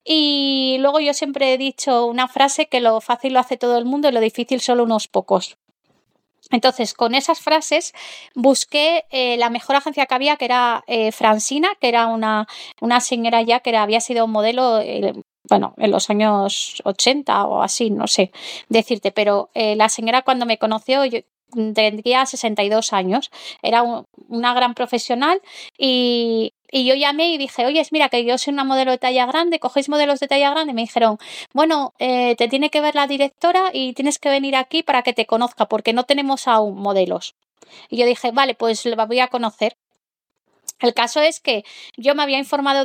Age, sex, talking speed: 20-39, female, 195 wpm